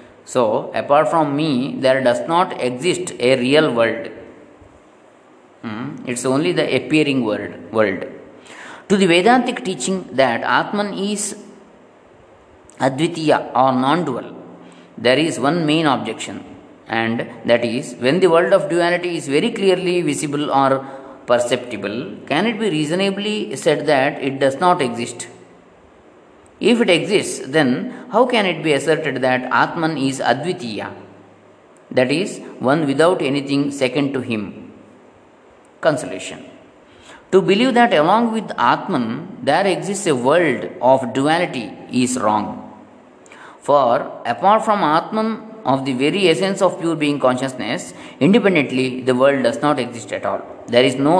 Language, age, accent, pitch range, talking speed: Kannada, 20-39, native, 130-190 Hz, 135 wpm